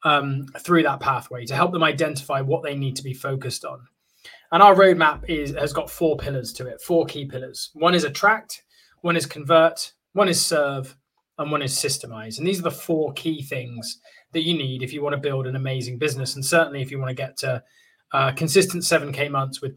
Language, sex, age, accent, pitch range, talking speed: English, male, 20-39, British, 135-170 Hz, 220 wpm